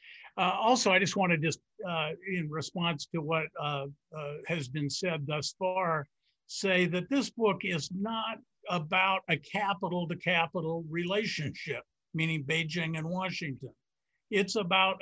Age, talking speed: 50-69, 135 wpm